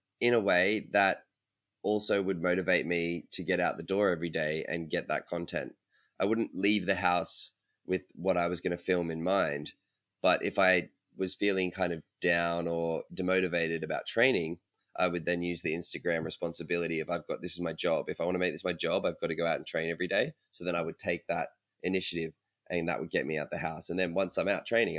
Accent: Australian